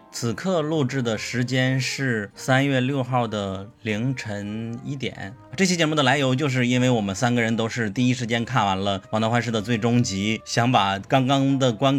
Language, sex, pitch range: Chinese, male, 105-130 Hz